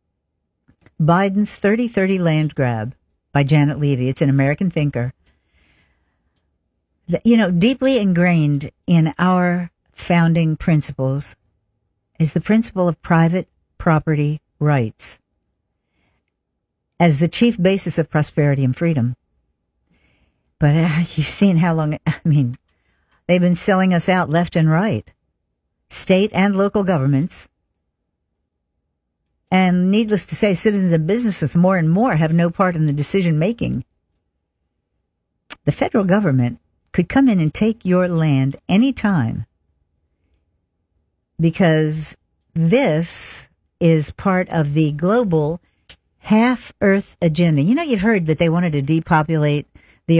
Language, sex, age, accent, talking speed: English, female, 60-79, American, 120 wpm